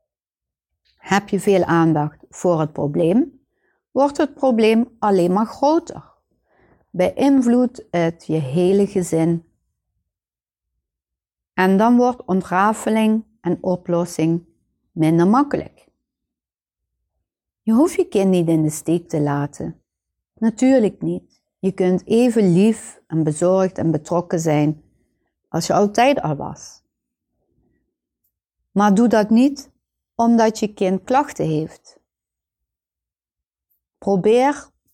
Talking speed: 105 wpm